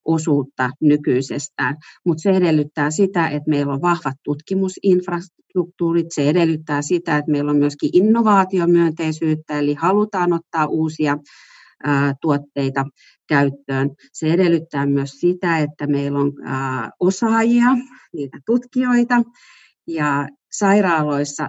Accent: native